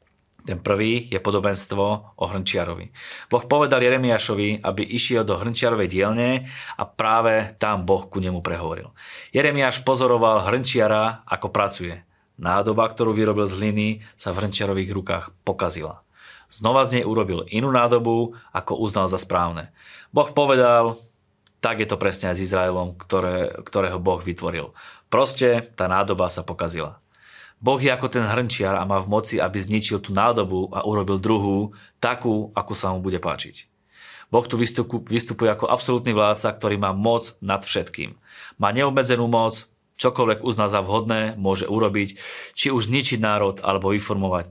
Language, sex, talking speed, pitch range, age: Slovak, male, 150 wpm, 95-115 Hz, 30-49